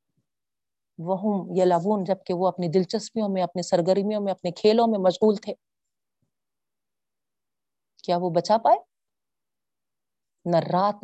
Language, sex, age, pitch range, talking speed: Urdu, female, 40-59, 180-250 Hz, 145 wpm